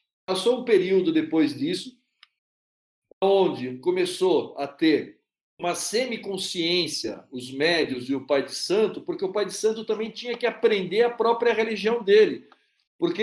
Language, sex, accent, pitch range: English, male, Brazilian, 175-290 Hz